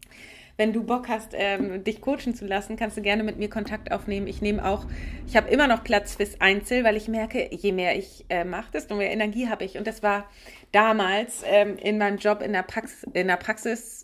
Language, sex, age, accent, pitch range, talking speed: German, female, 30-49, German, 190-225 Hz, 205 wpm